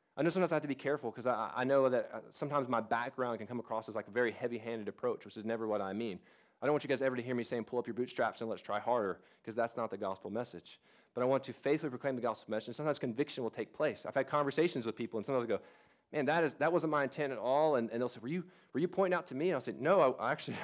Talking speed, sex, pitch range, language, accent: 310 wpm, male, 115-145 Hz, English, American